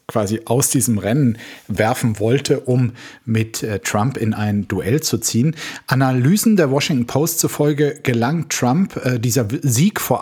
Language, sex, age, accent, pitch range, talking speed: German, male, 50-69, German, 110-135 Hz, 145 wpm